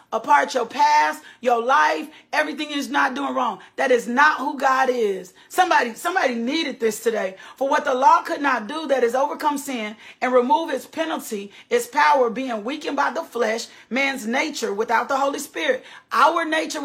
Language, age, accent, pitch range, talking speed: English, 40-59, American, 245-310 Hz, 180 wpm